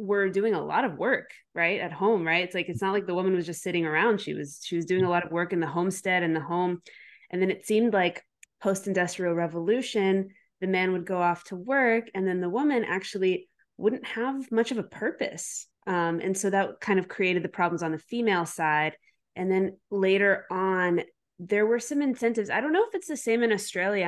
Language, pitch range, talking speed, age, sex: English, 175-215 Hz, 225 wpm, 20-39, female